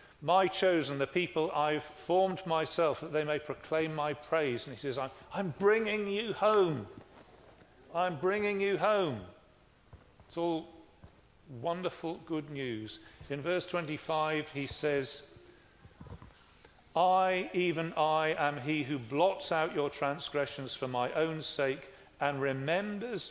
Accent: British